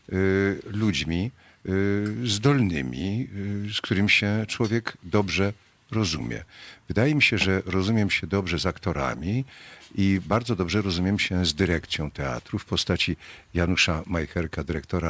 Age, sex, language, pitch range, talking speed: 50-69, male, Polish, 85-110 Hz, 120 wpm